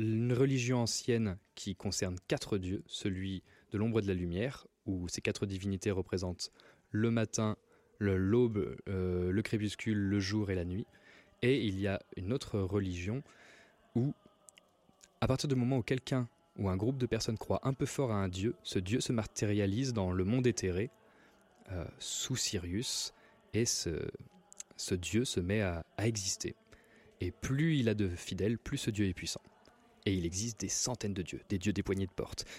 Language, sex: French, male